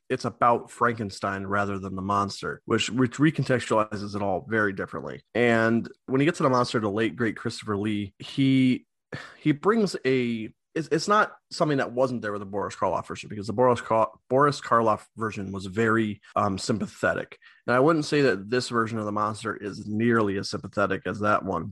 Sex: male